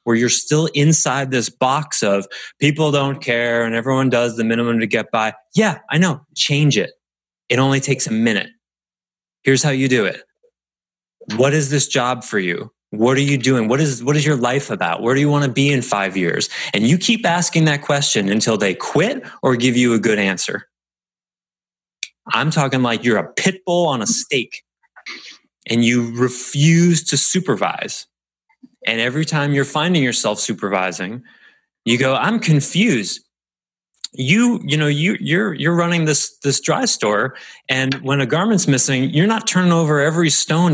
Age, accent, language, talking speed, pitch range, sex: 30-49, American, English, 180 wpm, 125-165 Hz, male